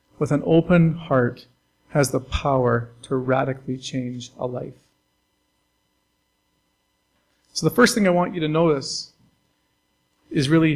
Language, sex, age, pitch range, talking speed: English, male, 40-59, 130-165 Hz, 130 wpm